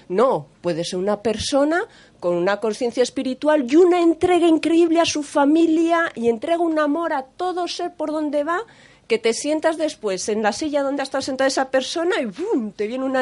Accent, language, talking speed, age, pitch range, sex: Spanish, Spanish, 200 wpm, 40-59, 210-325 Hz, female